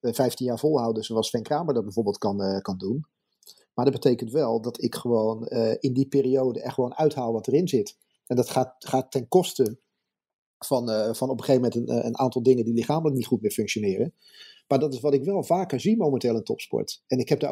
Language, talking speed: Dutch, 235 wpm